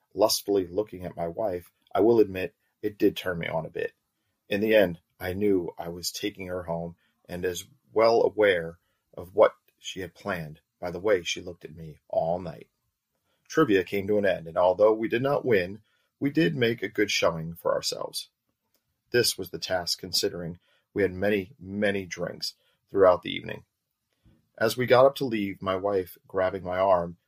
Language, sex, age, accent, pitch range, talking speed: English, male, 40-59, American, 90-110 Hz, 190 wpm